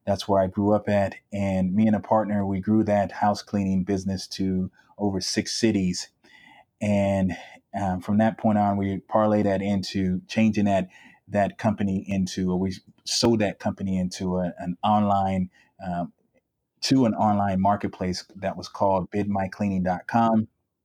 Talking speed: 150 wpm